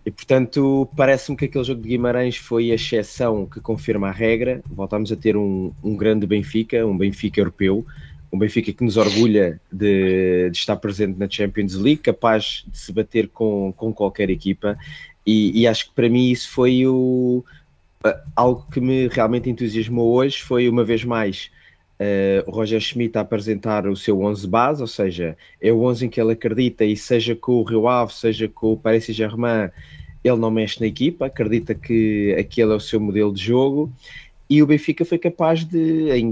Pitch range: 105-125 Hz